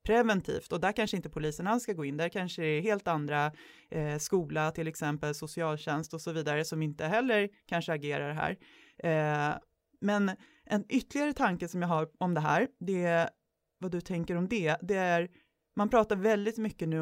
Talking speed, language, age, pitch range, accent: 175 wpm, English, 20-39, 160-215 Hz, Swedish